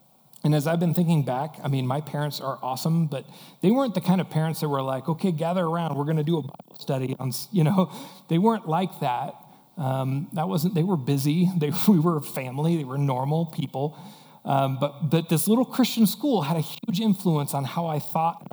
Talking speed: 225 wpm